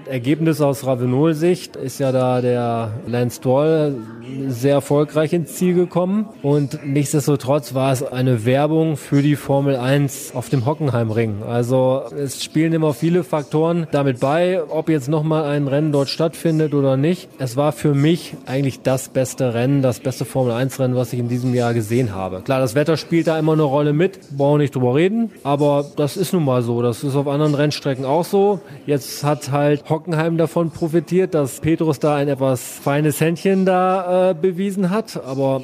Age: 20-39